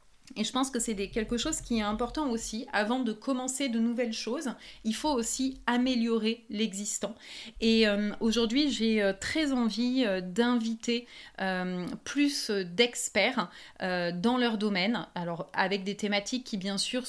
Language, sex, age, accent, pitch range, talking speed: French, female, 30-49, French, 205-245 Hz, 150 wpm